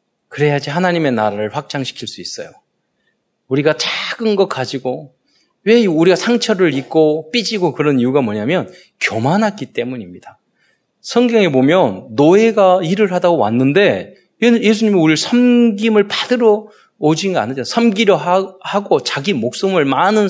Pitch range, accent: 150-220 Hz, native